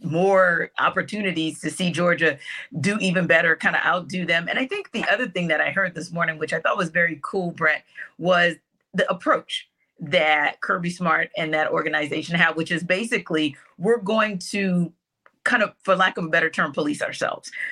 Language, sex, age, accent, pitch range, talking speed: English, female, 40-59, American, 160-200 Hz, 190 wpm